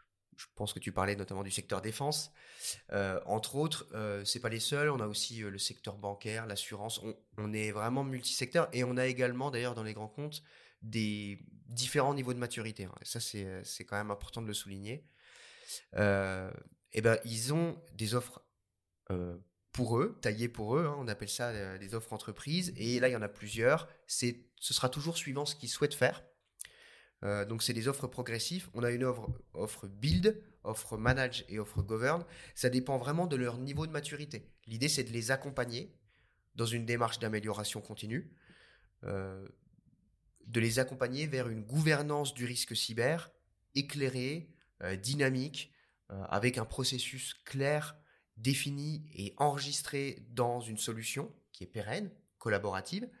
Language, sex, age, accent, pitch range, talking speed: French, male, 30-49, French, 105-140 Hz, 175 wpm